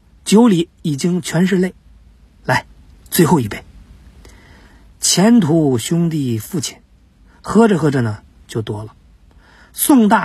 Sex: male